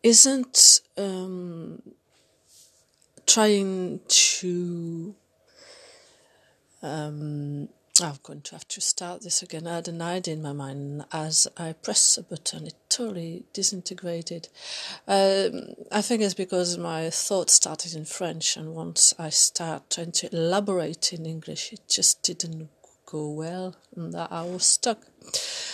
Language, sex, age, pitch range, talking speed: English, female, 40-59, 165-200 Hz, 135 wpm